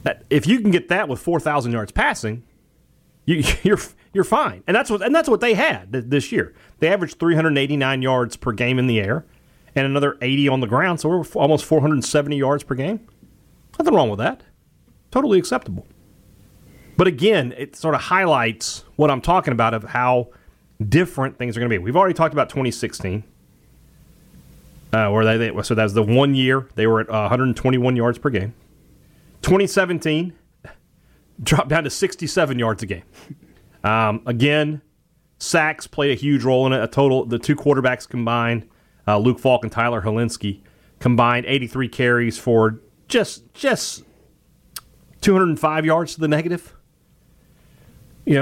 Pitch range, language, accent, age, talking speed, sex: 115-150 Hz, English, American, 30-49, 175 wpm, male